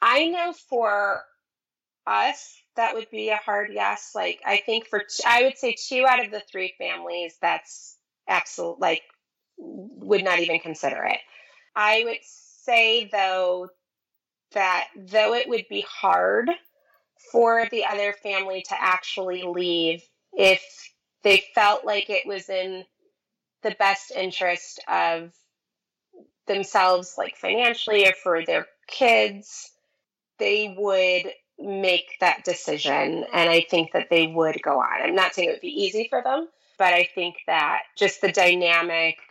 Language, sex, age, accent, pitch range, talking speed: English, female, 30-49, American, 180-230 Hz, 145 wpm